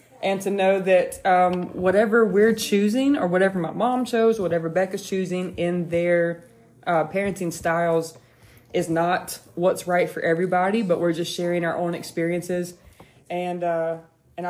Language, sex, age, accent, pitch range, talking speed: English, female, 20-39, American, 170-200 Hz, 155 wpm